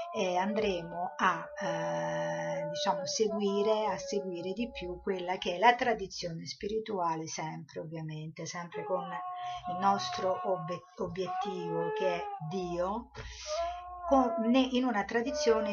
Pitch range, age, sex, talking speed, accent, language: 170-220 Hz, 50-69, female, 110 wpm, native, Italian